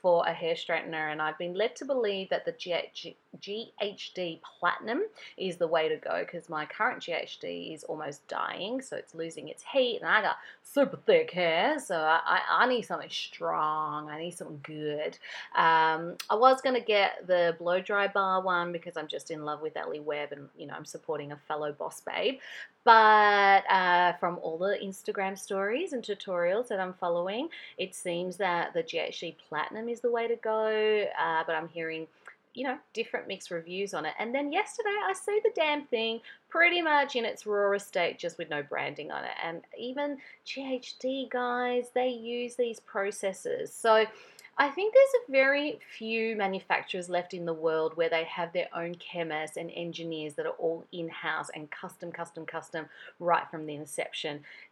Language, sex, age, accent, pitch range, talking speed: English, female, 30-49, Australian, 165-245 Hz, 185 wpm